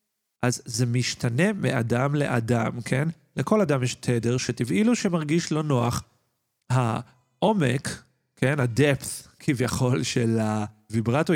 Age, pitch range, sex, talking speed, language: 40-59, 120-150 Hz, male, 105 wpm, Hebrew